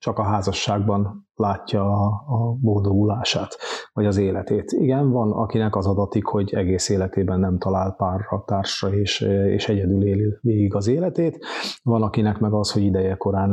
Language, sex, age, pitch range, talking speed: Hungarian, male, 30-49, 100-115 Hz, 160 wpm